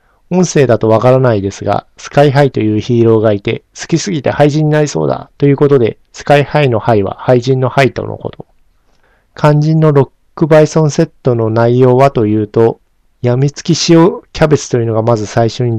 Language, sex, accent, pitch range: Japanese, male, native, 110-145 Hz